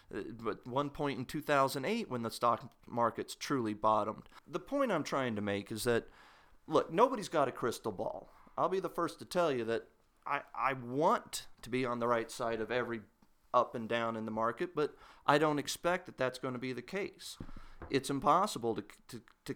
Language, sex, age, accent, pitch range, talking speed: English, male, 40-59, American, 115-150 Hz, 205 wpm